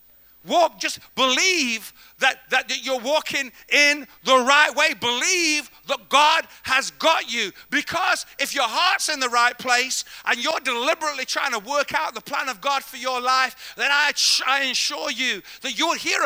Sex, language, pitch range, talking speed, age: male, English, 260-335 Hz, 180 wpm, 50-69